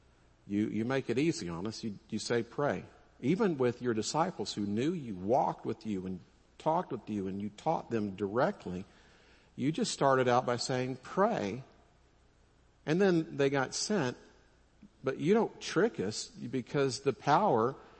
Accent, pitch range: American, 85-130 Hz